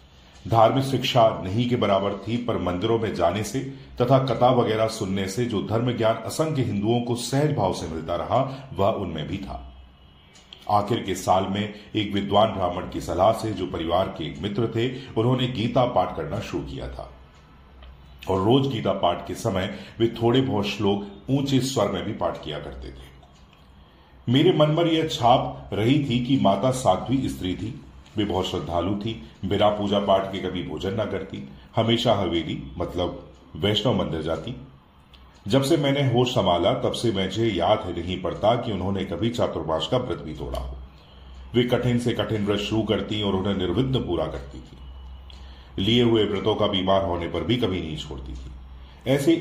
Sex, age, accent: male, 40-59, native